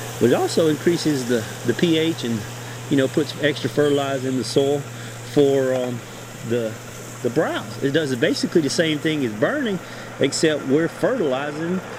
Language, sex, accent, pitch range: English, male, American, 125-155 Hz